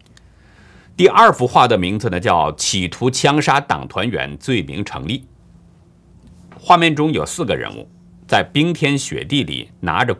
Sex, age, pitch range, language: male, 50-69, 100-150 Hz, Chinese